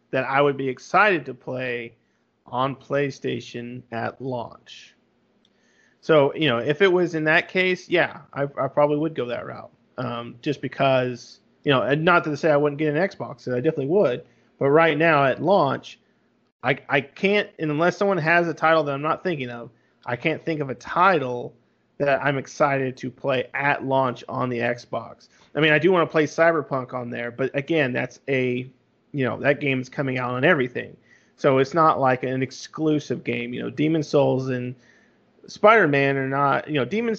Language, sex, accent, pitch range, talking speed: English, male, American, 125-155 Hz, 195 wpm